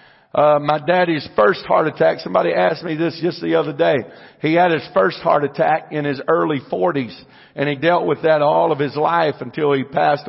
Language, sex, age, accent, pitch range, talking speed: English, male, 50-69, American, 150-200 Hz, 210 wpm